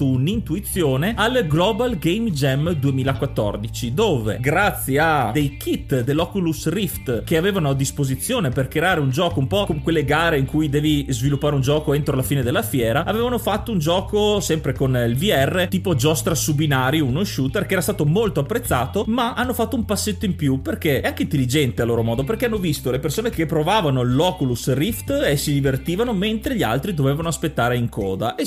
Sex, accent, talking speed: male, native, 190 wpm